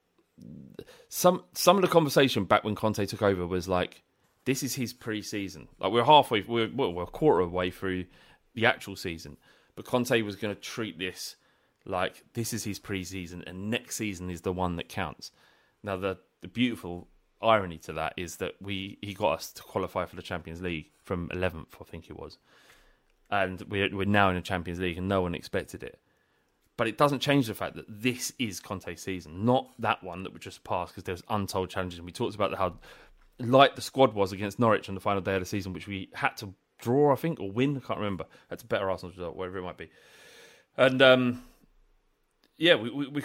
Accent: British